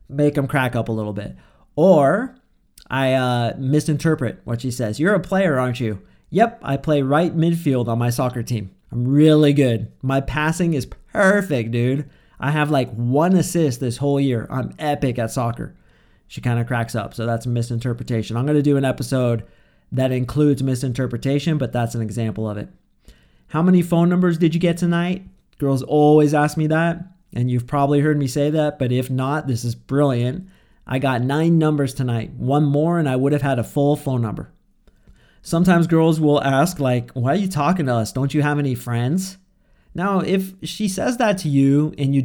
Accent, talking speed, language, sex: American, 195 wpm, English, male